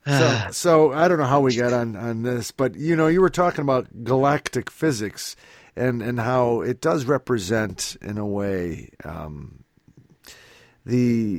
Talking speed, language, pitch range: 165 wpm, English, 105-140 Hz